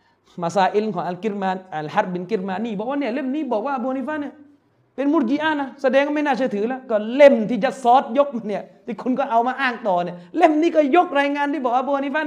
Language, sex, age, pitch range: Thai, male, 30-49, 185-275 Hz